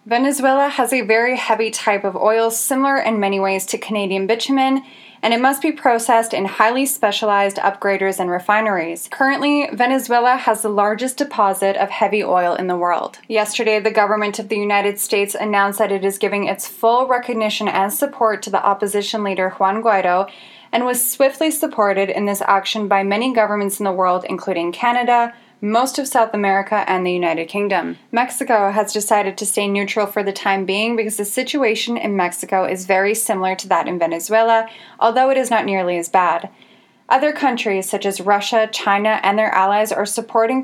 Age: 10-29